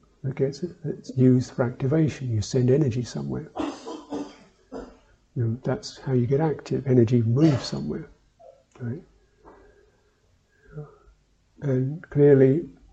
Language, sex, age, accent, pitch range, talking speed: English, male, 50-69, British, 115-145 Hz, 105 wpm